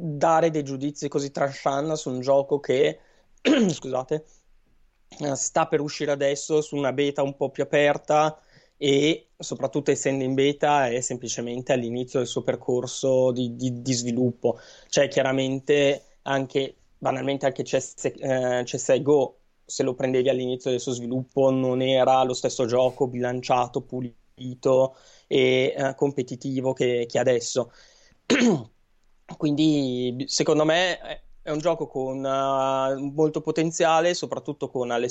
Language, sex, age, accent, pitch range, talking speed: Italian, male, 20-39, native, 130-150 Hz, 130 wpm